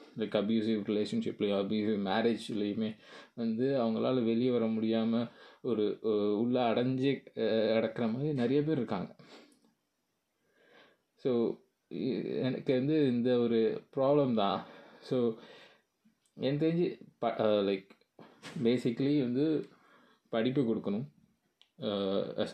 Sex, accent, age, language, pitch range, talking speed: male, native, 20-39, Tamil, 105-125 Hz, 95 wpm